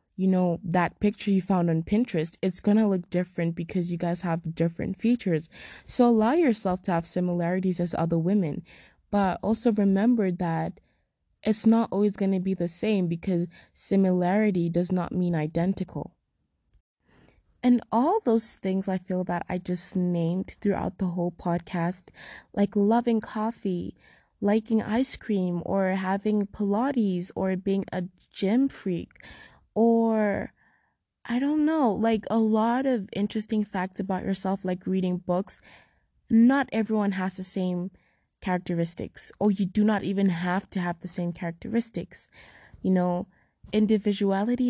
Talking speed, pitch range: 145 wpm, 180-215 Hz